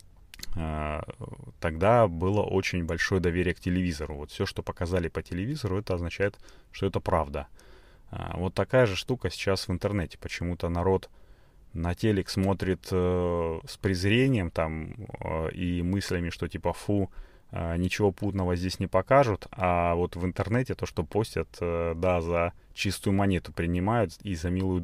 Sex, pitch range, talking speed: male, 85-100 Hz, 140 wpm